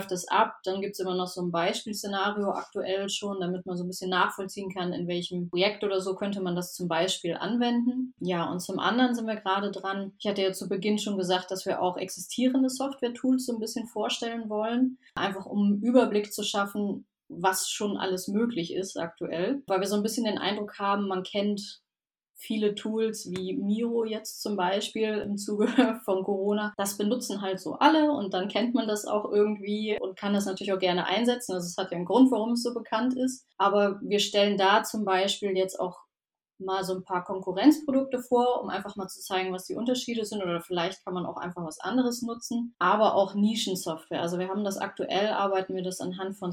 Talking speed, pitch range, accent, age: 210 wpm, 190-220 Hz, German, 20-39